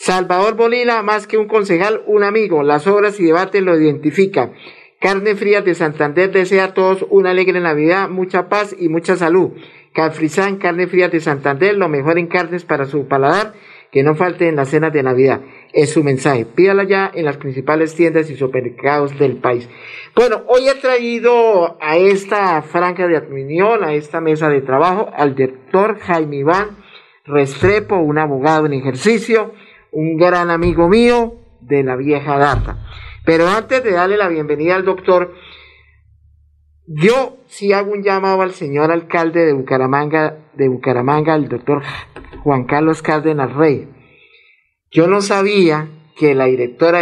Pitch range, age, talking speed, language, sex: 145-195 Hz, 50-69, 160 wpm, Spanish, male